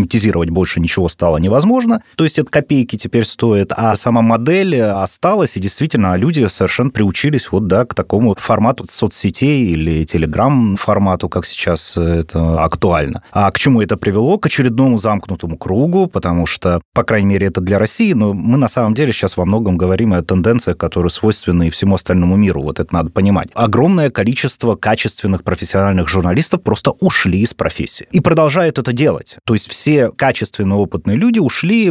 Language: Russian